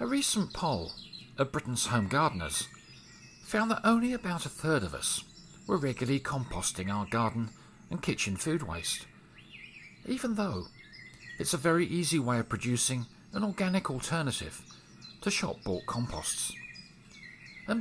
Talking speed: 135 wpm